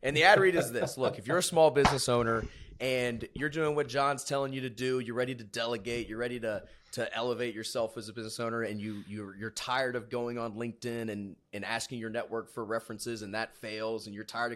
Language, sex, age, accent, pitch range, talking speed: English, male, 30-49, American, 105-125 Hz, 240 wpm